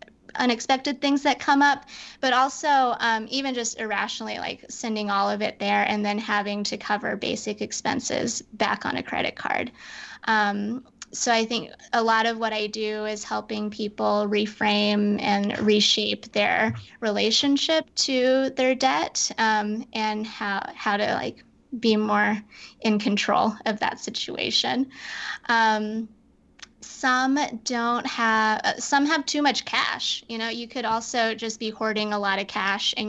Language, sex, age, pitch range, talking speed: English, female, 20-39, 210-245 Hz, 155 wpm